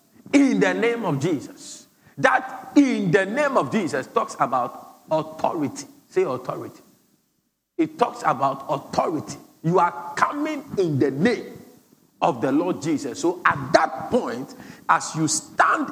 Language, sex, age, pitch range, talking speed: English, male, 50-69, 190-315 Hz, 140 wpm